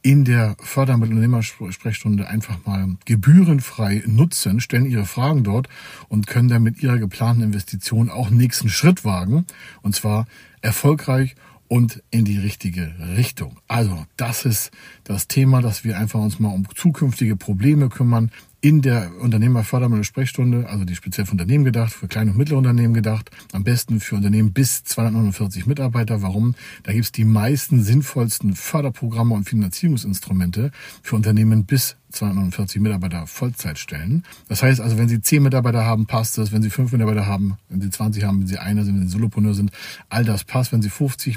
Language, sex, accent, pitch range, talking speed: German, male, German, 100-125 Hz, 175 wpm